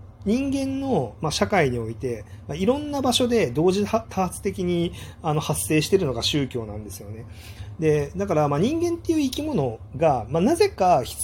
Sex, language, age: male, Japanese, 30-49